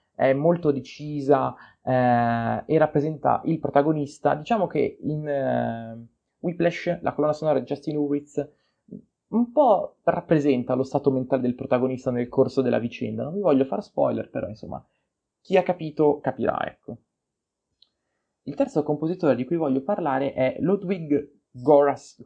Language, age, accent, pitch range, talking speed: Italian, 20-39, native, 120-150 Hz, 145 wpm